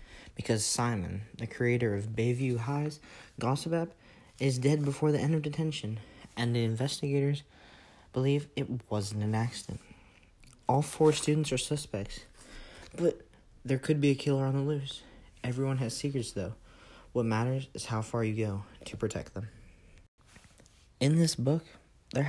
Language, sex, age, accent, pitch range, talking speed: English, male, 40-59, American, 110-145 Hz, 150 wpm